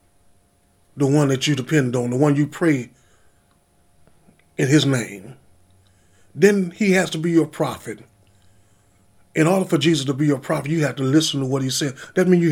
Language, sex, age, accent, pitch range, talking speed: English, male, 30-49, American, 110-155 Hz, 185 wpm